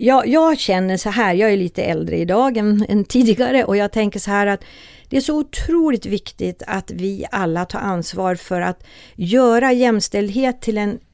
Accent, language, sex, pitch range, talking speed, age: native, Swedish, female, 200-255 Hz, 185 wpm, 50-69